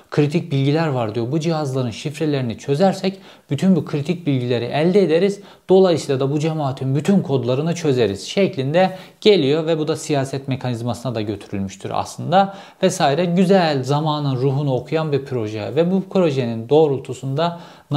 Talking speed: 145 wpm